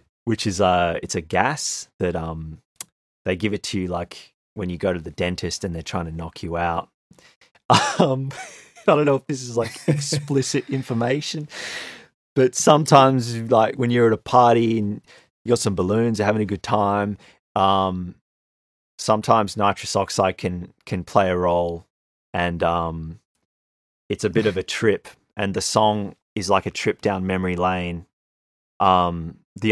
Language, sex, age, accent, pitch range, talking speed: English, male, 30-49, Australian, 90-120 Hz, 165 wpm